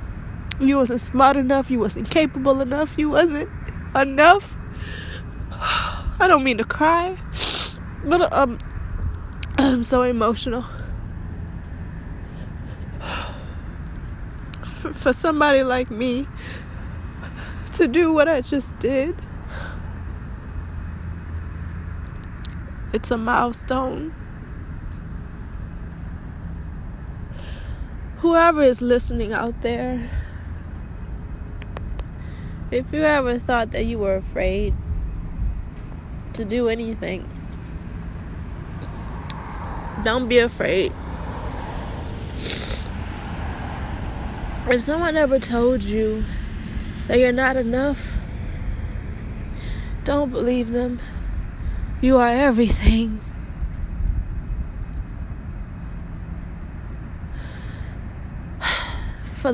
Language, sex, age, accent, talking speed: English, female, 20-39, American, 70 wpm